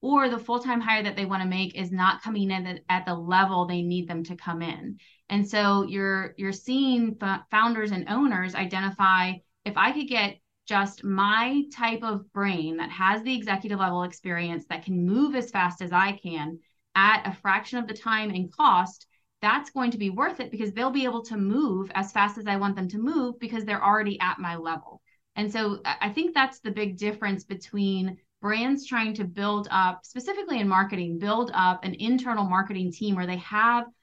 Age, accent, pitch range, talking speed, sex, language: 20-39, American, 185-225 Hz, 200 wpm, female, English